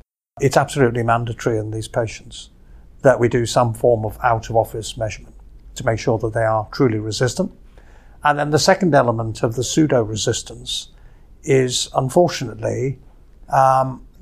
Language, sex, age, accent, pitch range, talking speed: English, male, 50-69, British, 115-135 Hz, 145 wpm